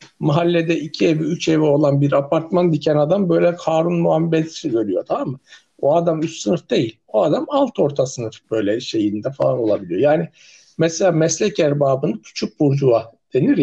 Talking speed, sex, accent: 165 wpm, male, native